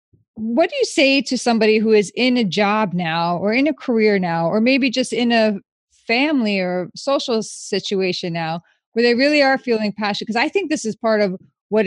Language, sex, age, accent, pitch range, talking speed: English, female, 30-49, American, 180-225 Hz, 205 wpm